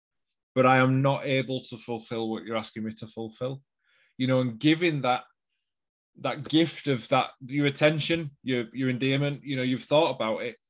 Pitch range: 115-140 Hz